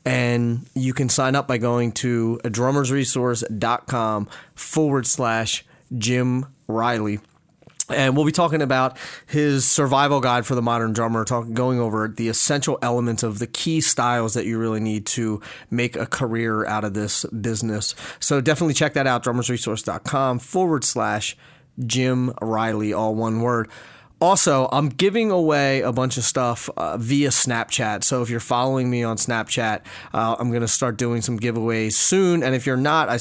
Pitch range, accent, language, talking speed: 115-140 Hz, American, English, 165 wpm